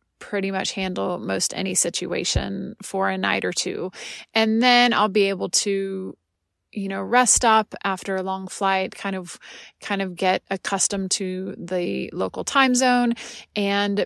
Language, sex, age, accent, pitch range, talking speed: English, female, 30-49, American, 190-215 Hz, 160 wpm